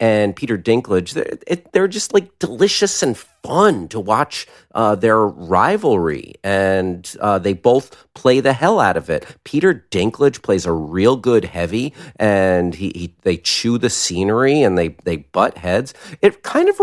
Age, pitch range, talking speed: 40-59, 90-130 Hz, 170 wpm